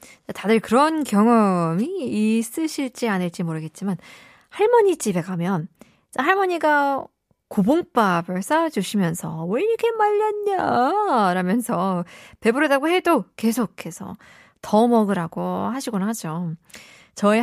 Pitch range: 185-285 Hz